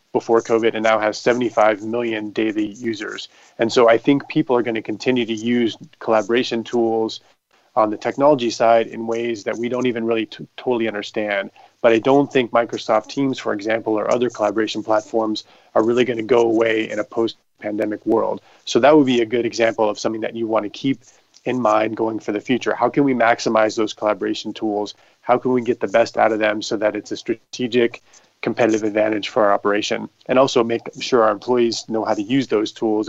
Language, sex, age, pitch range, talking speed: English, male, 30-49, 110-120 Hz, 205 wpm